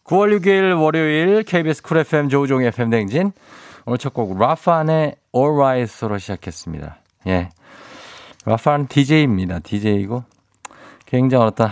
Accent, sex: native, male